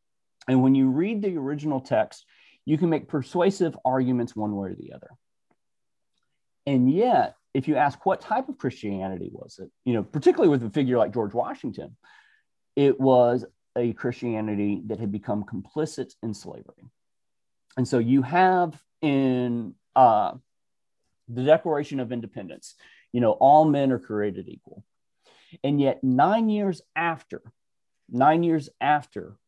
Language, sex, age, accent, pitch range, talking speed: English, male, 40-59, American, 115-150 Hz, 145 wpm